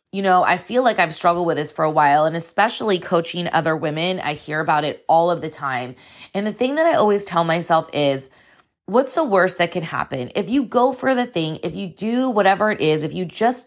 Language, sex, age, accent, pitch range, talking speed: English, female, 20-39, American, 165-230 Hz, 240 wpm